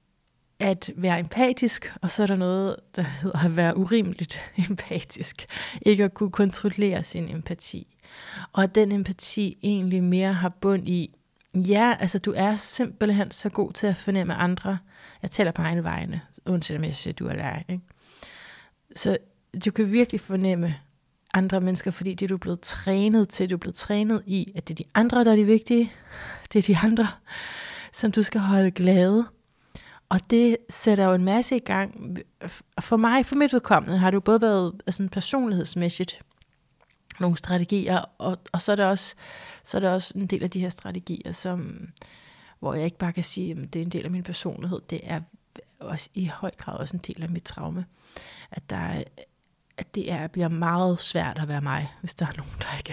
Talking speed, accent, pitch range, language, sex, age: 190 wpm, native, 175-205 Hz, Danish, female, 30-49